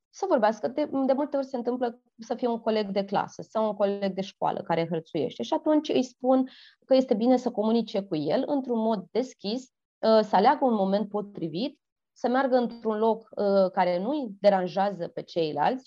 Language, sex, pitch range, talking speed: Romanian, female, 195-245 Hz, 190 wpm